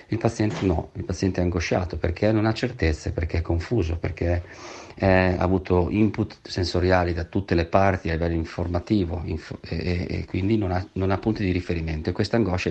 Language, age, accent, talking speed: Italian, 40-59, native, 200 wpm